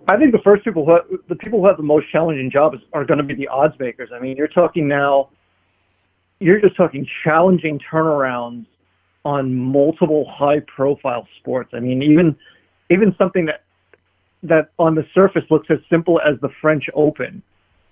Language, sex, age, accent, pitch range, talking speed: English, male, 40-59, American, 135-165 Hz, 170 wpm